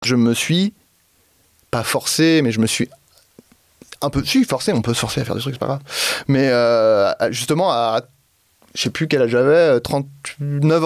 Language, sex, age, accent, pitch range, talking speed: French, male, 30-49, French, 115-140 Hz, 205 wpm